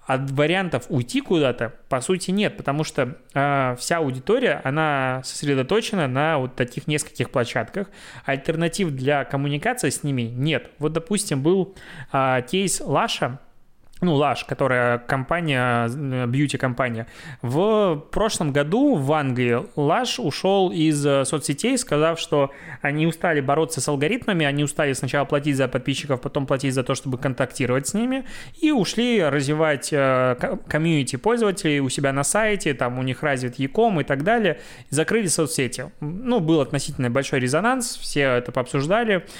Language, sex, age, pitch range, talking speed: Russian, male, 20-39, 130-165 Hz, 145 wpm